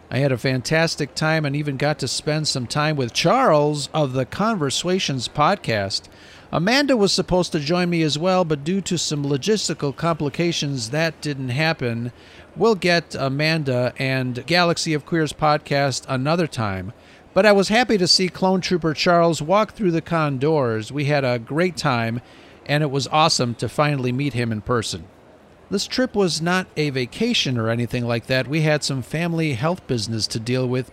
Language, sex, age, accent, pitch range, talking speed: English, male, 40-59, American, 125-175 Hz, 180 wpm